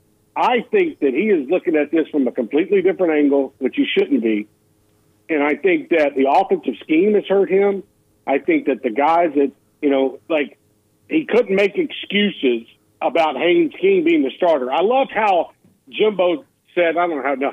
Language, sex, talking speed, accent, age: English, male, 185 wpm, American, 50-69